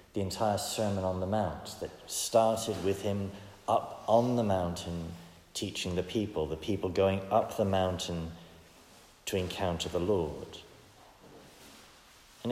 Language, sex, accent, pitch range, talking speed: English, male, British, 90-105 Hz, 135 wpm